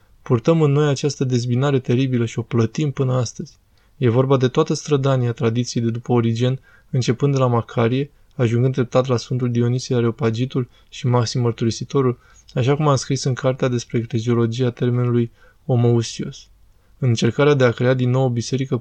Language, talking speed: Romanian, 165 wpm